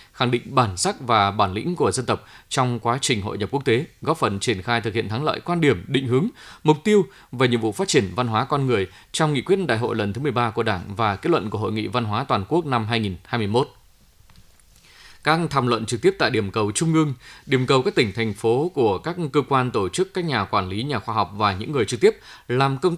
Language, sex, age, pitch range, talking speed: Vietnamese, male, 20-39, 110-145 Hz, 255 wpm